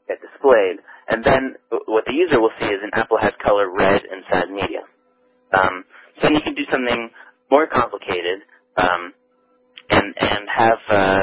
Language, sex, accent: English, male, American